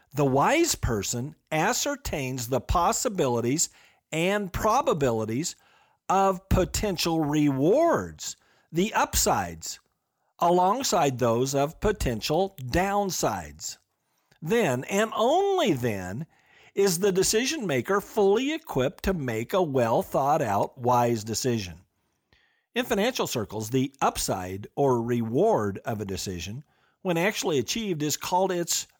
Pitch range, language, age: 125-195 Hz, English, 50-69